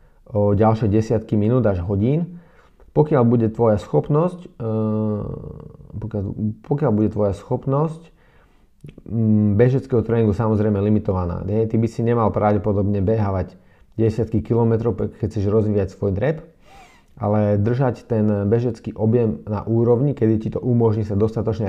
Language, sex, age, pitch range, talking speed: Slovak, male, 30-49, 100-120 Hz, 125 wpm